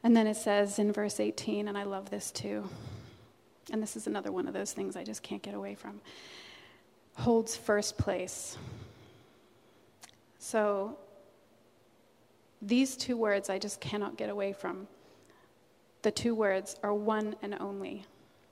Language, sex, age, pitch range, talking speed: English, female, 30-49, 200-230 Hz, 150 wpm